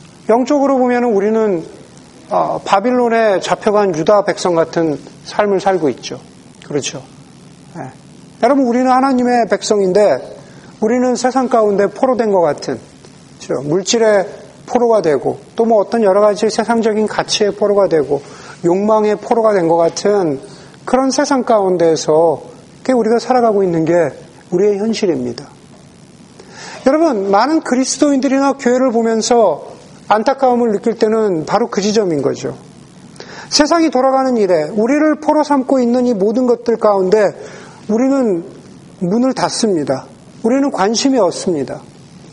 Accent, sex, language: native, male, Korean